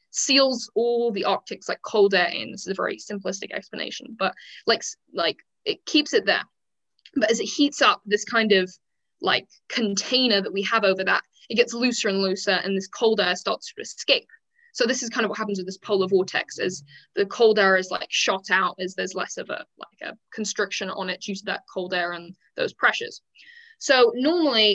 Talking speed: 210 wpm